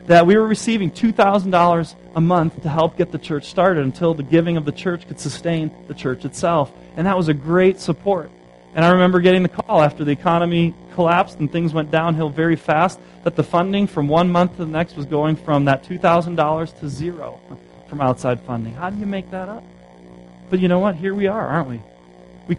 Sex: male